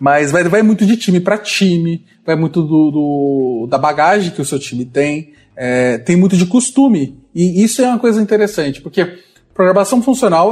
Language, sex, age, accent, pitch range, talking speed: Portuguese, male, 20-39, Brazilian, 140-195 Hz, 190 wpm